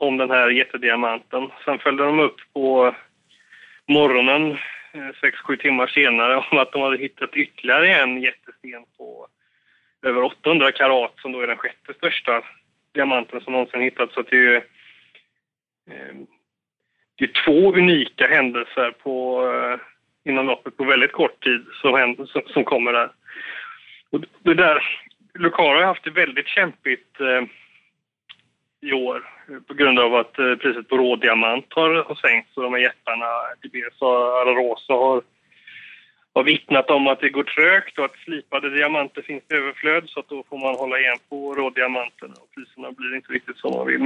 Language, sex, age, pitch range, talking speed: Swedish, male, 30-49, 125-145 Hz, 150 wpm